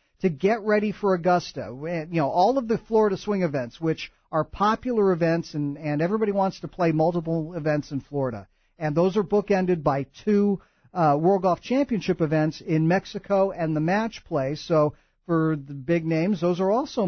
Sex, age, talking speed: male, 50-69, 185 wpm